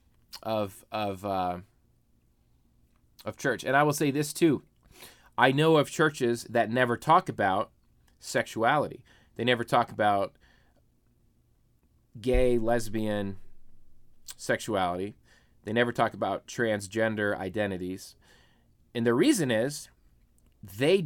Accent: American